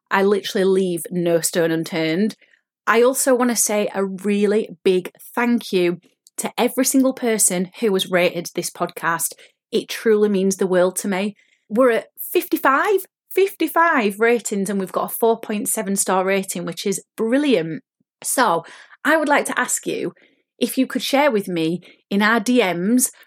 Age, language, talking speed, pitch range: 30-49, English, 160 wpm, 180-230 Hz